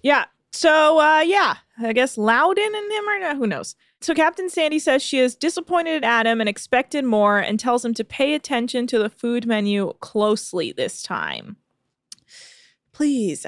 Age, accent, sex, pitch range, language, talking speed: 20-39, American, female, 235-315 Hz, English, 170 wpm